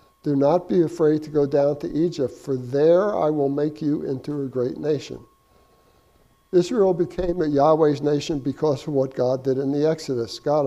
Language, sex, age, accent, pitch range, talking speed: English, male, 60-79, American, 135-165 Hz, 185 wpm